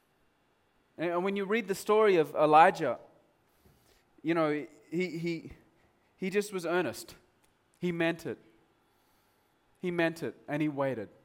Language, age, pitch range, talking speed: English, 30-49, 110-150 Hz, 135 wpm